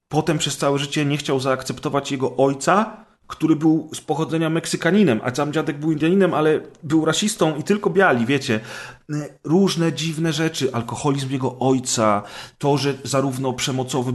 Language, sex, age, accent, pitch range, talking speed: Polish, male, 40-59, native, 120-155 Hz, 155 wpm